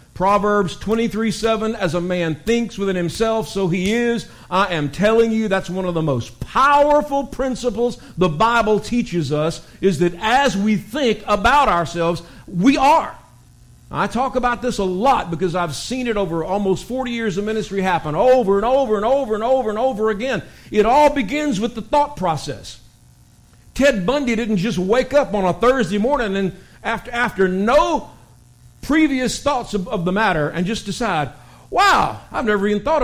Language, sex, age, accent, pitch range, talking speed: English, male, 50-69, American, 155-235 Hz, 180 wpm